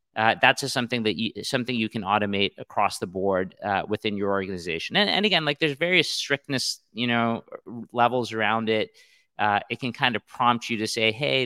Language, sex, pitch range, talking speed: English, male, 110-130 Hz, 200 wpm